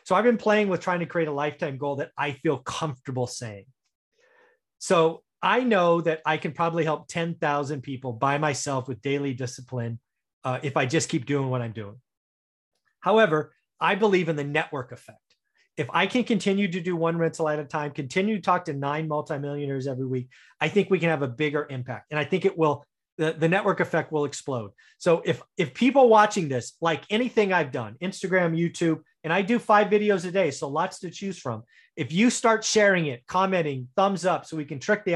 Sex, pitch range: male, 140-185 Hz